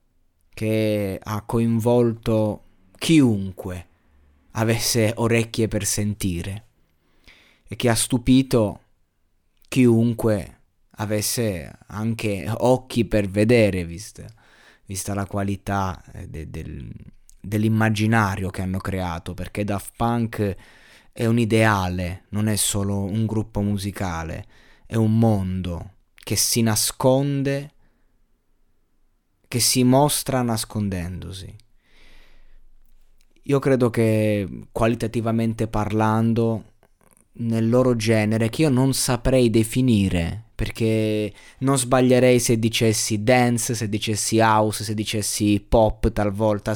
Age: 20-39